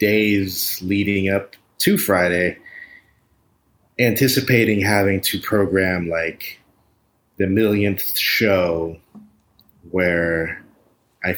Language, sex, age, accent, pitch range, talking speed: English, male, 30-49, American, 90-110 Hz, 80 wpm